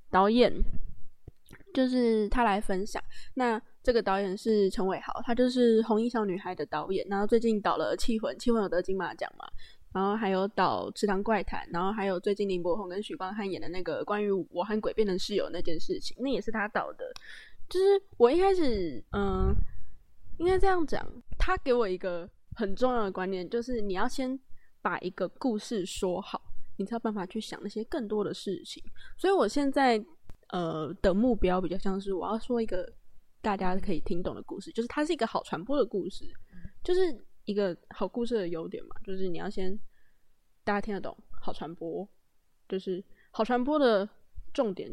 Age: 20-39